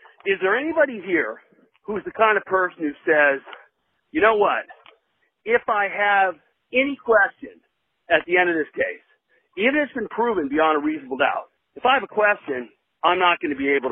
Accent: American